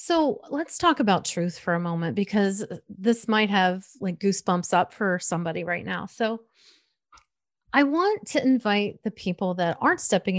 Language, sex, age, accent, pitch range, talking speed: English, female, 30-49, American, 180-240 Hz, 170 wpm